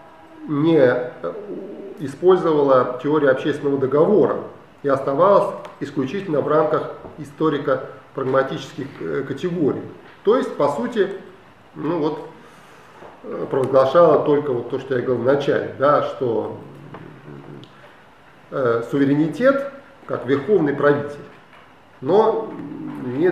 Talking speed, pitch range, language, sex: 80 wpm, 135-205 Hz, Russian, male